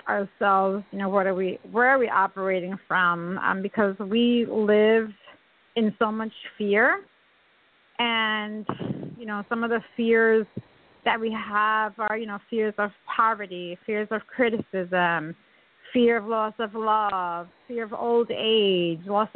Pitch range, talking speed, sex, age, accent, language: 200-235 Hz, 150 wpm, female, 40-59, American, English